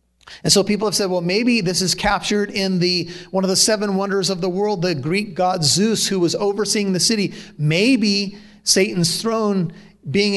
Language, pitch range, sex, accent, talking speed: English, 160-210 Hz, male, American, 190 wpm